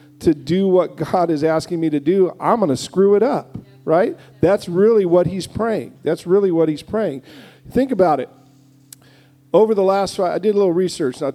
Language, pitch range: English, 145-180 Hz